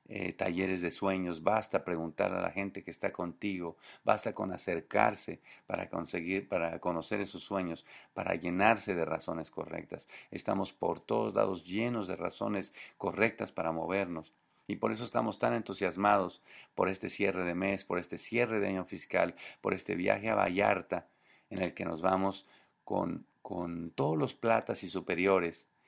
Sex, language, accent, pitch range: male, English, Mexican, 90-100 Hz